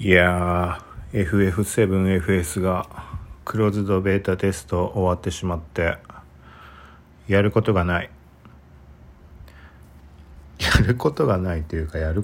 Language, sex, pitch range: Japanese, male, 80-105 Hz